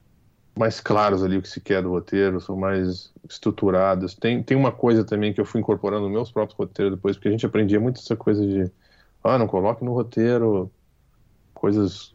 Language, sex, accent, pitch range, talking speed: Portuguese, male, Brazilian, 95-115 Hz, 200 wpm